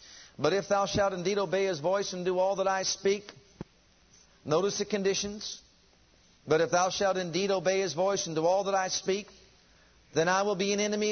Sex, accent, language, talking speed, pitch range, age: male, American, English, 200 wpm, 175-210 Hz, 50-69